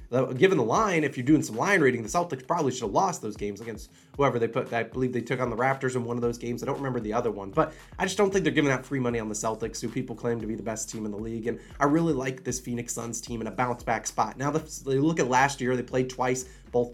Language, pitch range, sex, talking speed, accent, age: English, 120-155 Hz, male, 310 wpm, American, 20-39